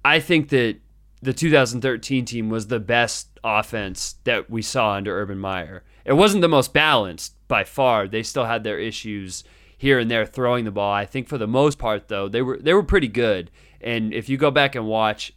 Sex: male